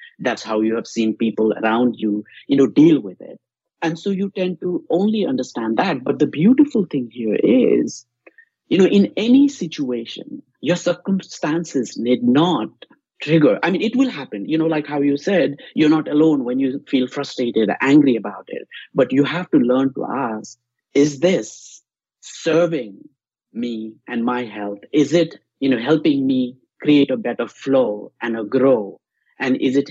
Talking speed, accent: 175 wpm, Indian